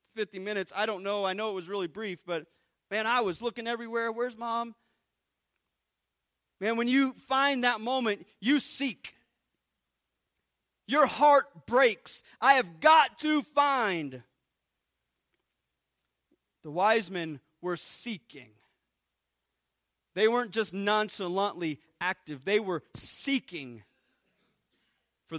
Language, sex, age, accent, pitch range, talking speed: English, male, 40-59, American, 145-240 Hz, 115 wpm